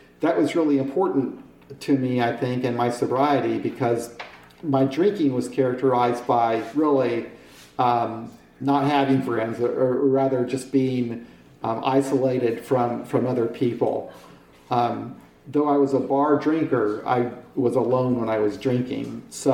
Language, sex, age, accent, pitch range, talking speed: English, male, 50-69, American, 120-140 Hz, 145 wpm